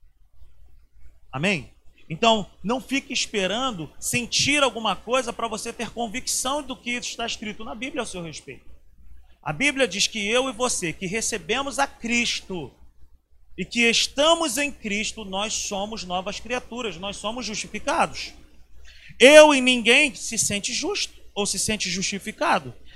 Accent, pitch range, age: Brazilian, 165-245 Hz, 40-59